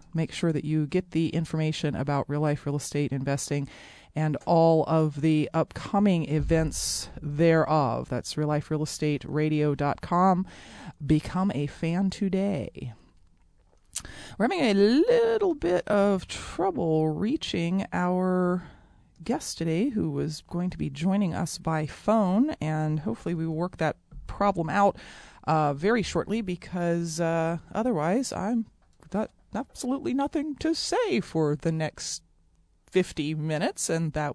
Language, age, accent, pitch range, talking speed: English, 30-49, American, 150-185 Hz, 125 wpm